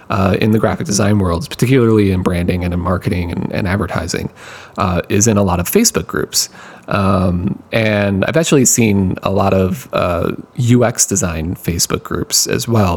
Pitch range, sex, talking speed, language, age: 95-120 Hz, male, 175 wpm, English, 30-49